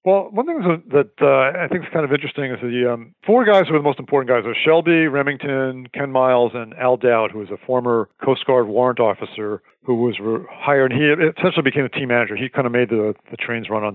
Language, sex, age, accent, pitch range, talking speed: English, male, 50-69, American, 120-150 Hz, 245 wpm